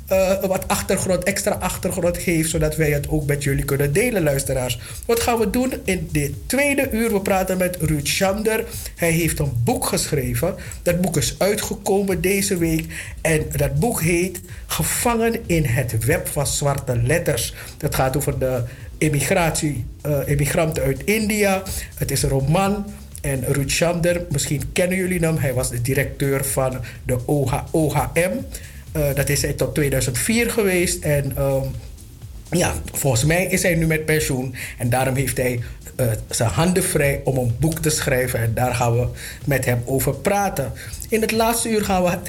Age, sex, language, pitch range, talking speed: 50-69, male, English, 130-175 Hz, 175 wpm